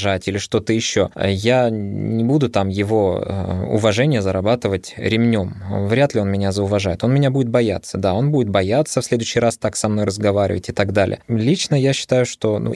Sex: male